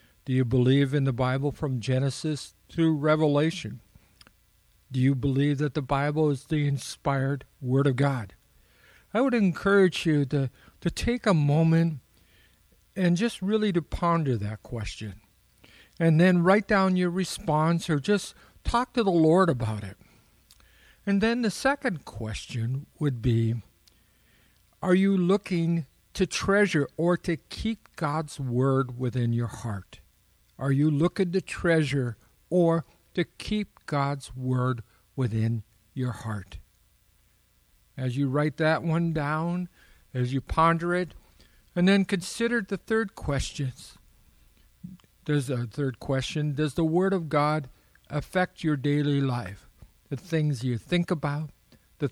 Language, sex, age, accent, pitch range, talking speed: English, male, 60-79, American, 130-175 Hz, 140 wpm